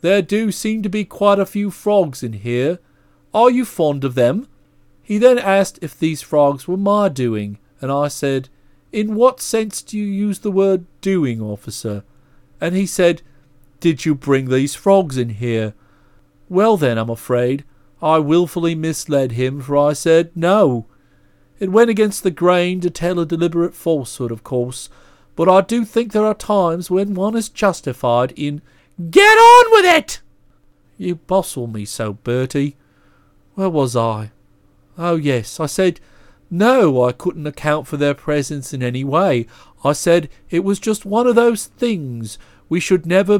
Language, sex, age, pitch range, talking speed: English, male, 40-59, 125-190 Hz, 170 wpm